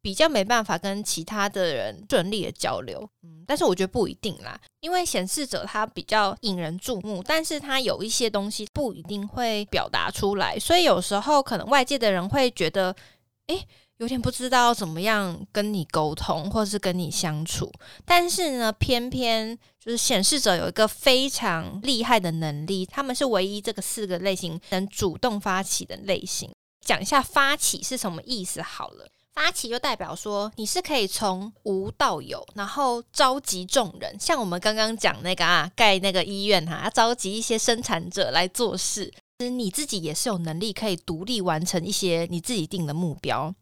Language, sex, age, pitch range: Chinese, female, 20-39, 185-245 Hz